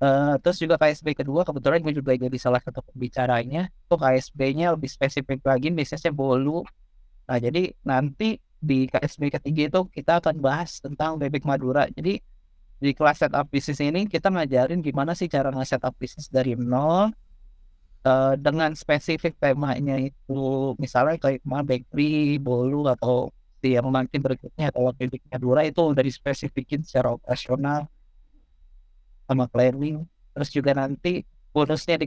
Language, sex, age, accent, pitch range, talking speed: Indonesian, male, 30-49, native, 130-155 Hz, 140 wpm